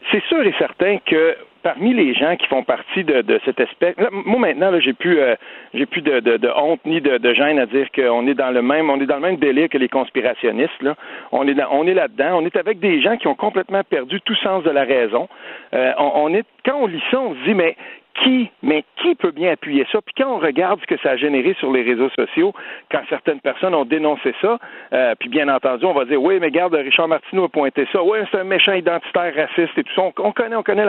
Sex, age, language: male, 50-69, French